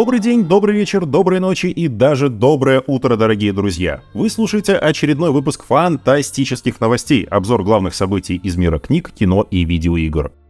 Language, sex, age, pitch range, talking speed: Russian, male, 30-49, 90-150 Hz, 155 wpm